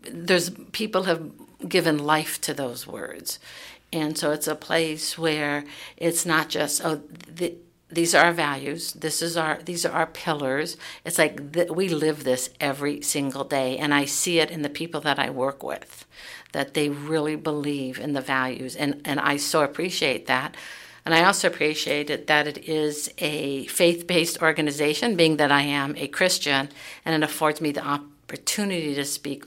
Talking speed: 180 wpm